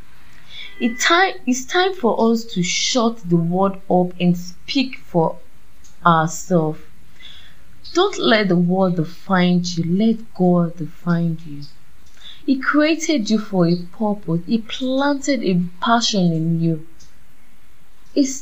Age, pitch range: 20-39, 165-225 Hz